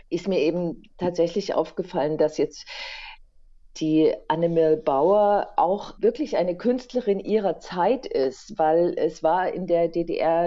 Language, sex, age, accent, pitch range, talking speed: German, female, 40-59, German, 170-215 Hz, 130 wpm